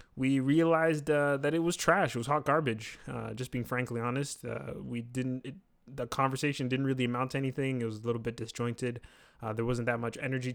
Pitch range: 120-145 Hz